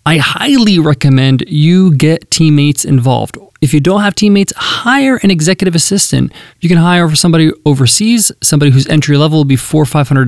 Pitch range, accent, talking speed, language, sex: 135-175 Hz, American, 180 wpm, English, male